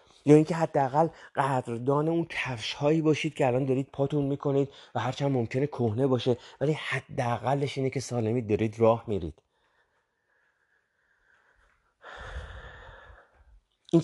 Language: Persian